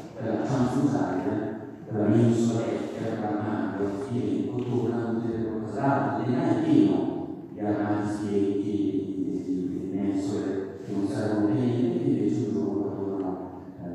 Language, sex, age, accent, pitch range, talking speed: Italian, male, 50-69, native, 110-140 Hz, 140 wpm